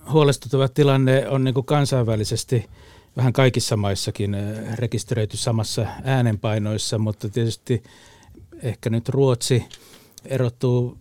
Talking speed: 95 wpm